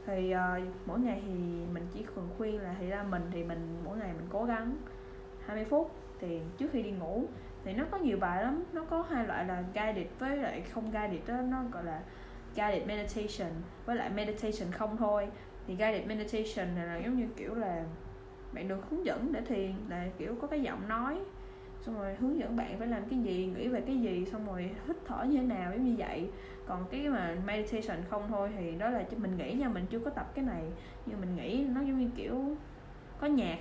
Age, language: 10-29, Vietnamese